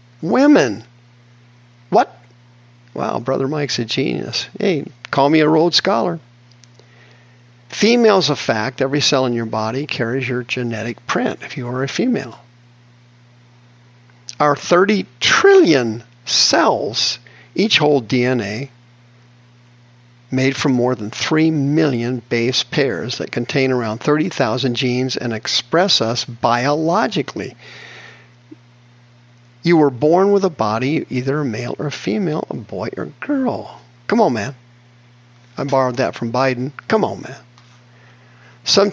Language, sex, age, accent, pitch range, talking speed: English, male, 50-69, American, 120-145 Hz, 130 wpm